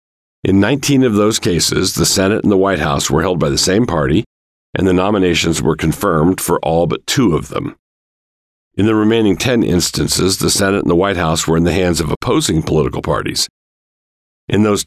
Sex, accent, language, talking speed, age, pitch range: male, American, English, 200 wpm, 50-69, 80-100 Hz